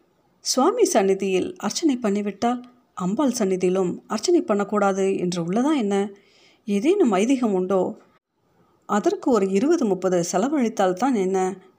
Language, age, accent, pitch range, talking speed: Tamil, 50-69, native, 180-225 Hz, 105 wpm